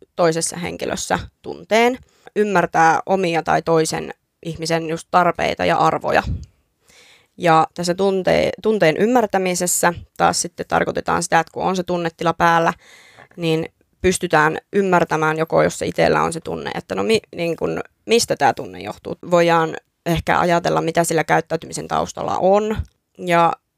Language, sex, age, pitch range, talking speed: Finnish, female, 20-39, 165-190 Hz, 140 wpm